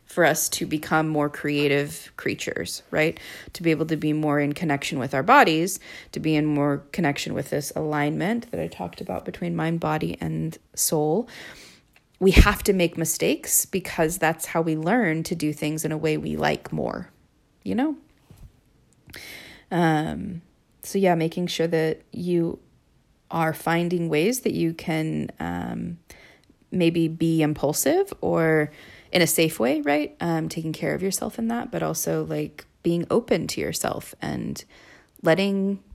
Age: 30-49